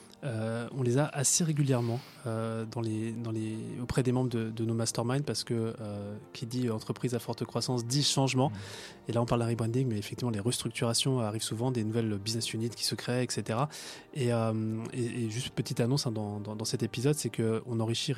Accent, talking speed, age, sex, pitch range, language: French, 215 wpm, 20-39, male, 115-130 Hz, French